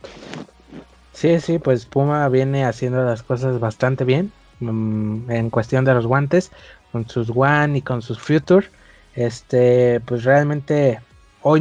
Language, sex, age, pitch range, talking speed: Spanish, male, 20-39, 115-140 Hz, 140 wpm